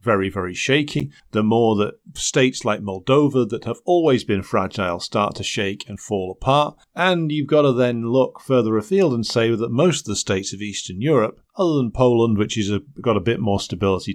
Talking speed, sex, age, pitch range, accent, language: 205 wpm, male, 40-59, 100-125 Hz, British, English